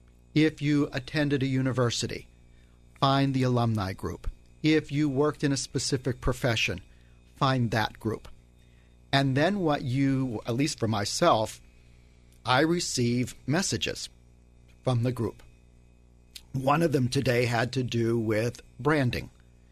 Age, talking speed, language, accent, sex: 50-69, 130 wpm, English, American, male